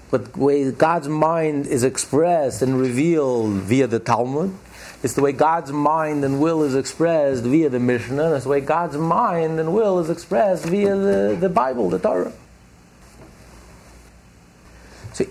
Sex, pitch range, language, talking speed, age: male, 105-155 Hz, English, 160 wpm, 50-69